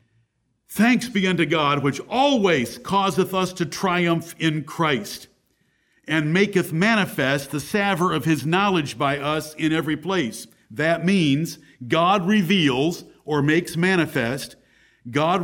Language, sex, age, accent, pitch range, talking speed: English, male, 50-69, American, 155-200 Hz, 130 wpm